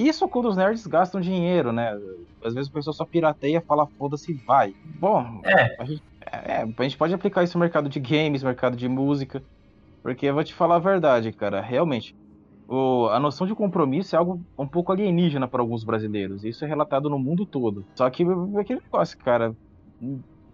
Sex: male